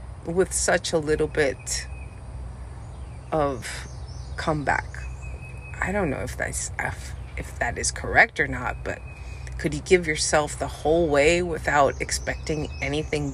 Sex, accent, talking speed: female, American, 125 wpm